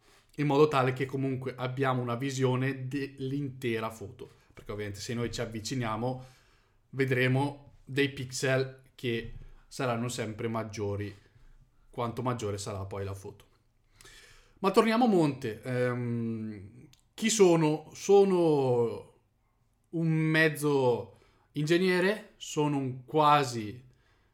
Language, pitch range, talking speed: Italian, 120-155 Hz, 105 wpm